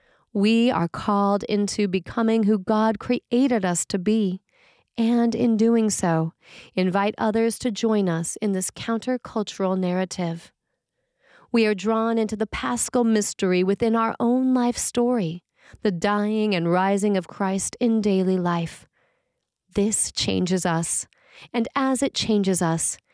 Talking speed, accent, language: 135 wpm, American, English